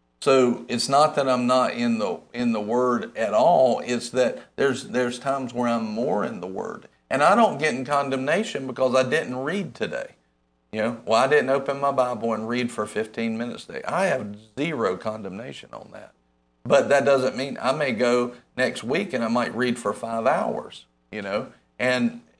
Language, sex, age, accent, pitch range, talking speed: English, male, 50-69, American, 110-135 Hz, 200 wpm